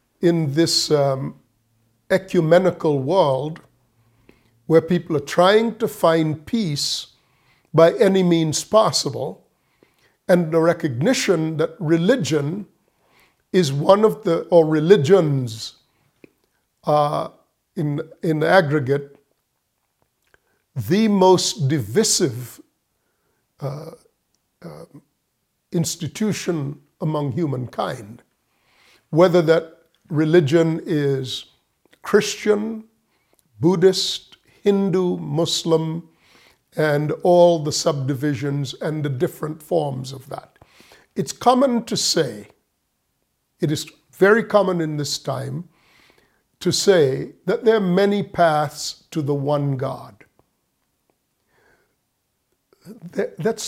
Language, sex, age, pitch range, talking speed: English, male, 50-69, 145-190 Hz, 90 wpm